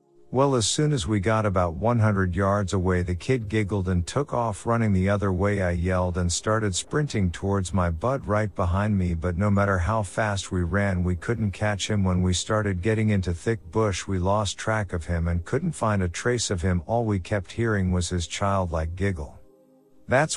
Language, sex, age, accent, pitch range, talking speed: English, male, 50-69, American, 90-110 Hz, 205 wpm